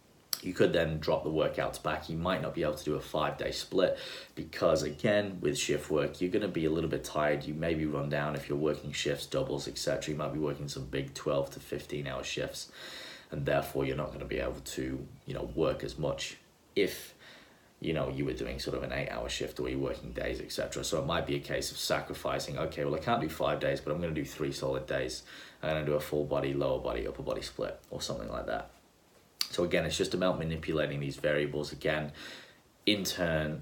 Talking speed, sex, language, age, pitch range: 235 wpm, male, English, 20-39, 70-80 Hz